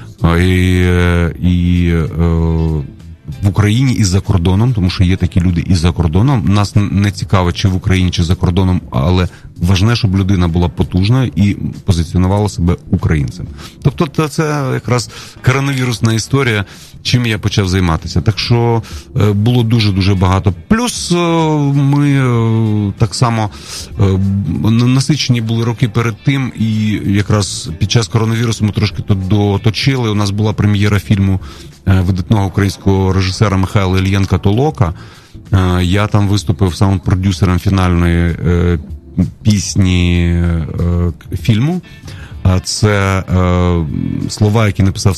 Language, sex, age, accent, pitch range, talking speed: Ukrainian, male, 30-49, native, 90-110 Hz, 115 wpm